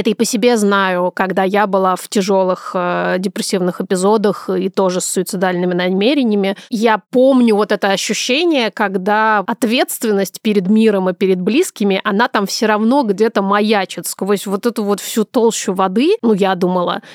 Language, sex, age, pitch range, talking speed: Russian, female, 30-49, 195-235 Hz, 160 wpm